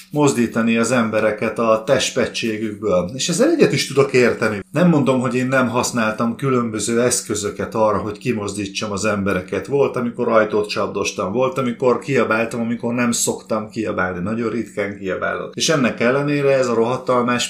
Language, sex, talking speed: Hungarian, male, 150 wpm